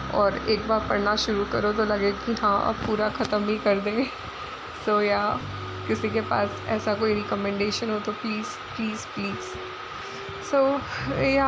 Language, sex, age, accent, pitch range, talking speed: Hindi, female, 20-39, native, 215-255 Hz, 160 wpm